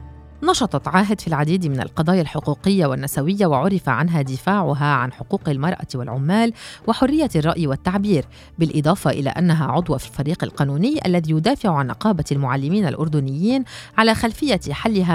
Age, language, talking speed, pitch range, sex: 30-49, Arabic, 135 wpm, 145-210 Hz, female